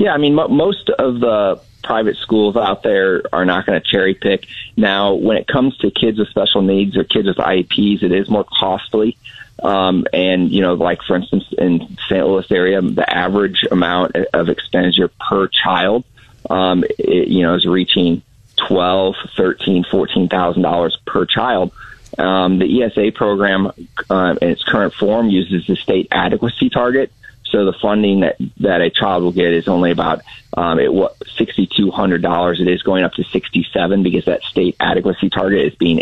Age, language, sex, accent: 30-49, English, male, American